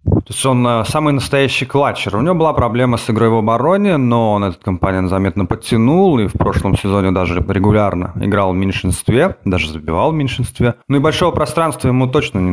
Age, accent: 30-49, native